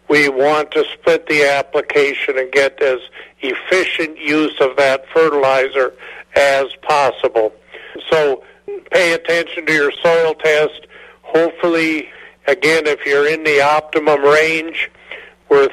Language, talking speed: English, 120 wpm